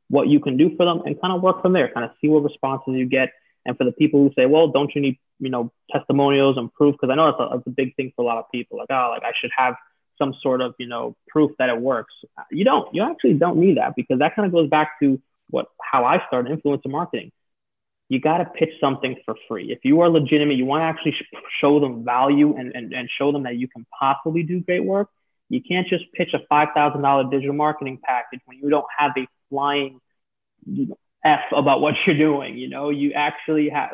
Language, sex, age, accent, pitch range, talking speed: English, male, 20-39, American, 130-150 Hz, 240 wpm